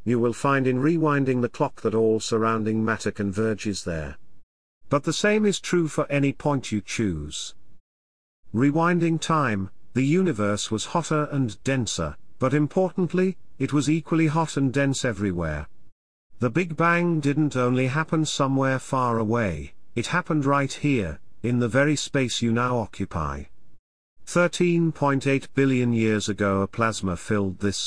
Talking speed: 145 wpm